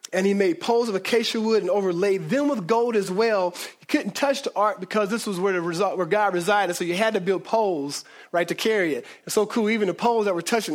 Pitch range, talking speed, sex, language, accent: 185-225 Hz, 260 wpm, male, English, American